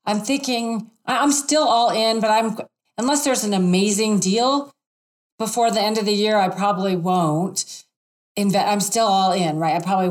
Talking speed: 180 wpm